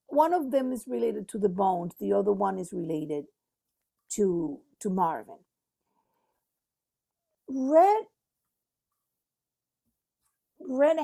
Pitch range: 205-295 Hz